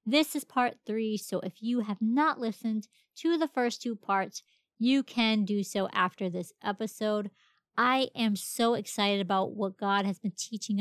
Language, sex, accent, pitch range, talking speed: English, female, American, 200-250 Hz, 180 wpm